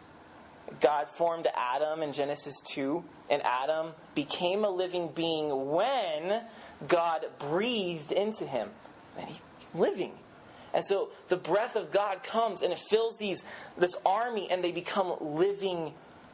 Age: 30-49